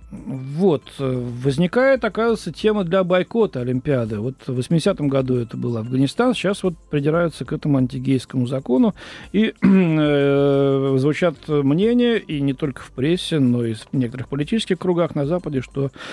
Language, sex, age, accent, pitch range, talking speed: Russian, male, 40-59, native, 130-180 Hz, 140 wpm